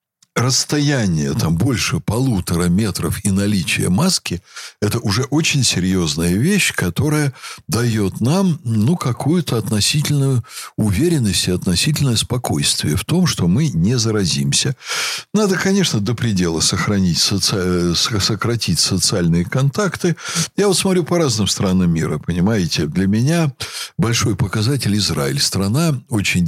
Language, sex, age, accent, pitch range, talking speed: Russian, male, 60-79, native, 100-155 Hz, 120 wpm